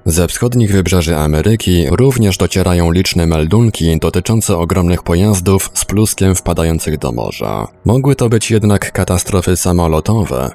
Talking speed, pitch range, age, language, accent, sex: 125 wpm, 85-100 Hz, 20-39, Polish, native, male